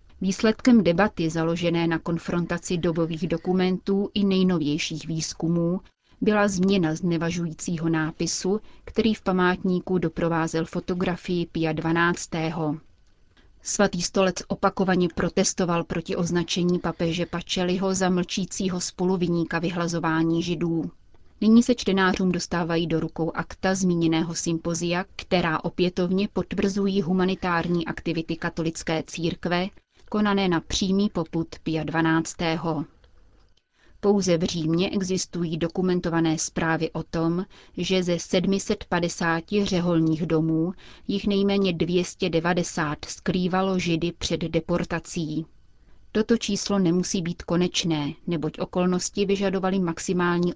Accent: native